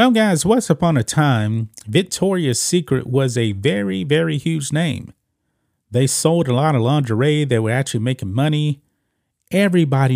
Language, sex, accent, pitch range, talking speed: English, male, American, 115-165 Hz, 155 wpm